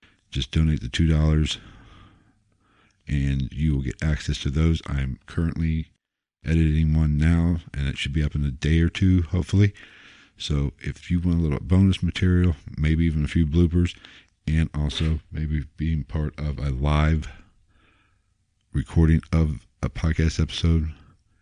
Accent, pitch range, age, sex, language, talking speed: American, 75-90 Hz, 50-69, male, English, 150 wpm